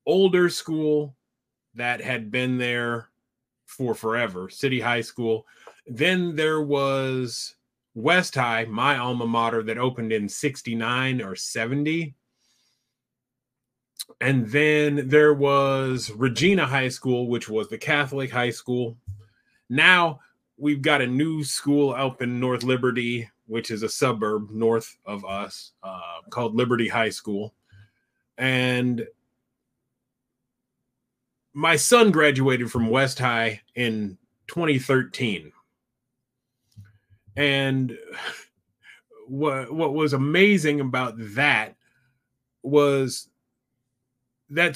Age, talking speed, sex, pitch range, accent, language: 30-49, 105 wpm, male, 120-145 Hz, American, English